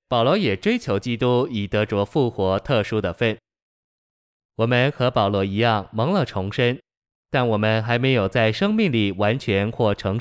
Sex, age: male, 20-39